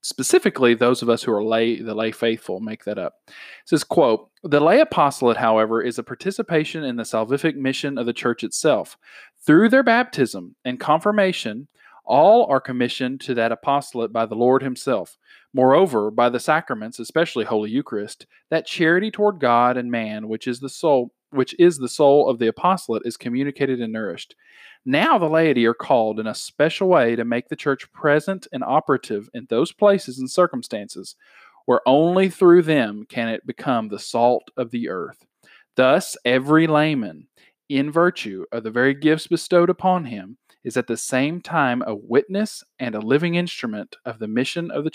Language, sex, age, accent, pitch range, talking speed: English, male, 40-59, American, 115-160 Hz, 180 wpm